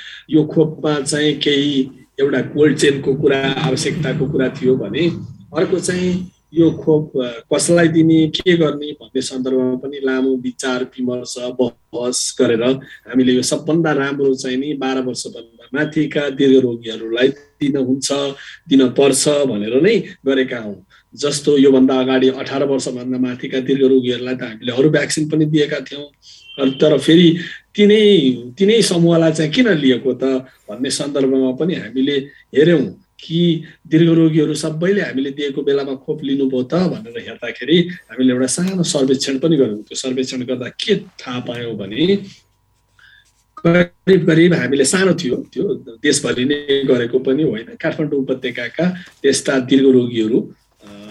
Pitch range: 130-155 Hz